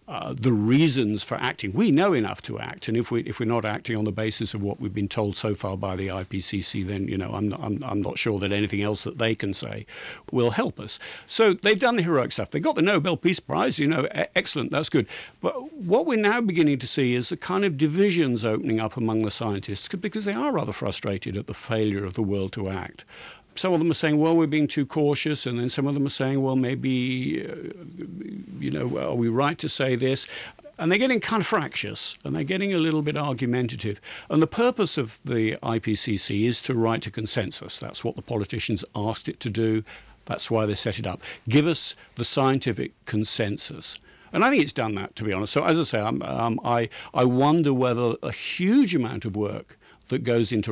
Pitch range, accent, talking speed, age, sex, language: 110-150 Hz, British, 230 wpm, 50-69, male, English